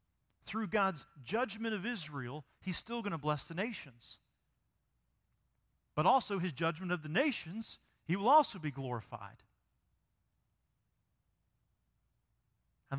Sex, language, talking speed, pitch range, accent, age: male, English, 115 wpm, 140-210 Hz, American, 40-59